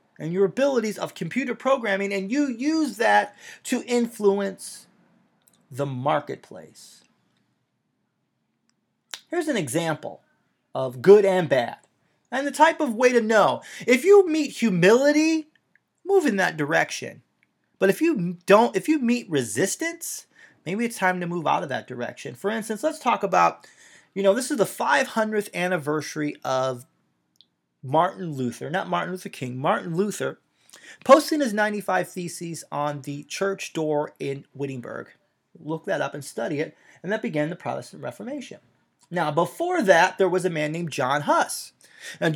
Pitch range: 155-245 Hz